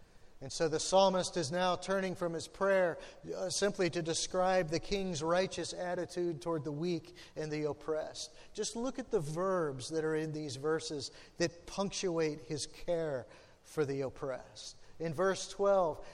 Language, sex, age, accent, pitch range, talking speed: English, male, 40-59, American, 160-195 Hz, 160 wpm